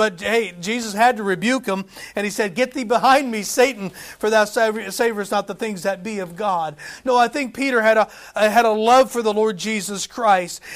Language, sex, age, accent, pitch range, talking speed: English, male, 40-59, American, 180-225 Hz, 230 wpm